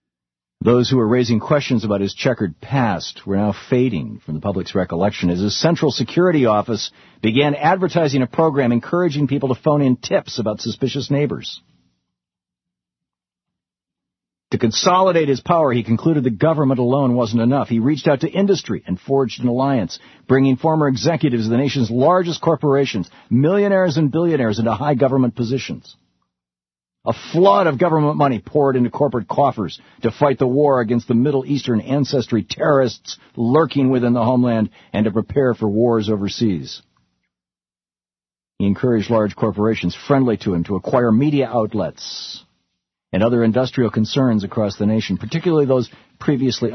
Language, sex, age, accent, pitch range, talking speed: English, male, 50-69, American, 105-140 Hz, 155 wpm